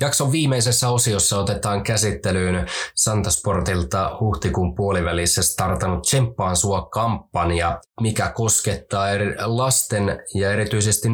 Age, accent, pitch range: 20-39, native, 90-110 Hz